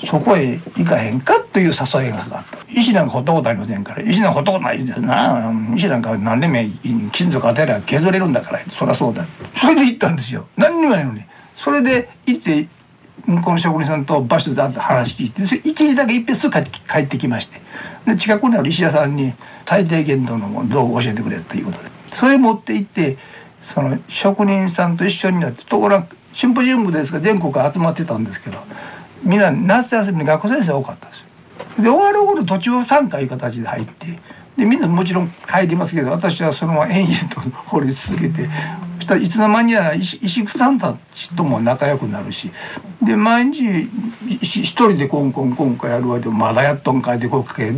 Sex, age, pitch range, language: male, 60-79, 135-220 Hz, Japanese